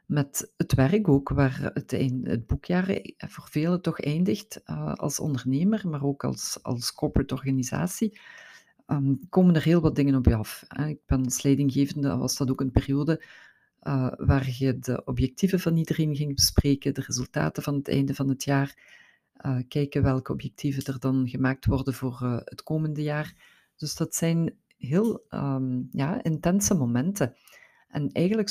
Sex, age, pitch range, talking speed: female, 50-69, 135-175 Hz, 155 wpm